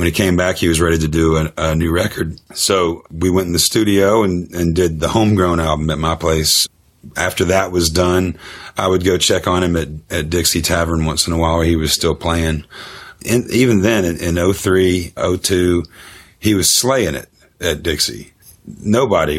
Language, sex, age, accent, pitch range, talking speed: English, male, 40-59, American, 80-90 Hz, 205 wpm